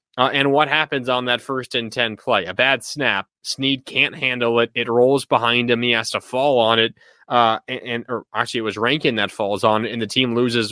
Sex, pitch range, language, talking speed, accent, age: male, 125-170 Hz, English, 235 wpm, American, 20-39